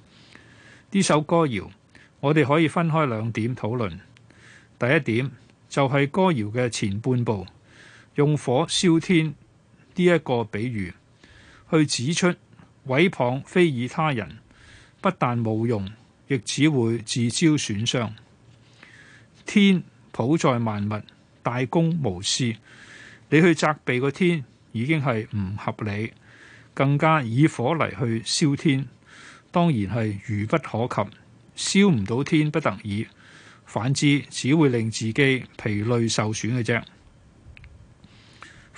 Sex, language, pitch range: male, Chinese, 110-150 Hz